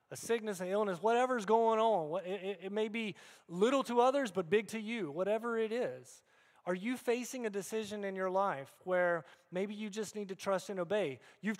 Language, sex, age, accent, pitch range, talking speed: English, male, 30-49, American, 170-220 Hz, 200 wpm